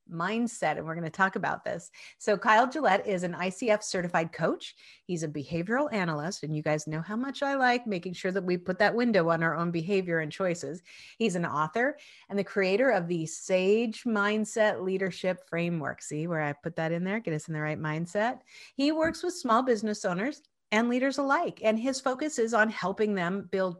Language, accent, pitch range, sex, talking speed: English, American, 175-250 Hz, female, 210 wpm